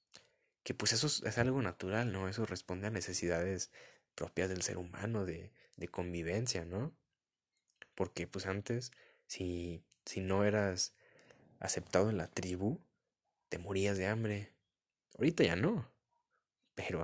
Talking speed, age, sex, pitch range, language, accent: 135 wpm, 20-39, male, 95-125 Hz, Spanish, Mexican